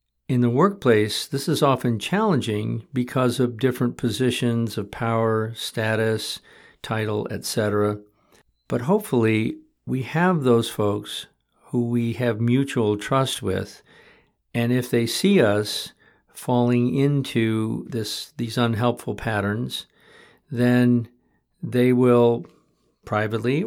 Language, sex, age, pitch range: English, male, 50-69, 105-125 Hz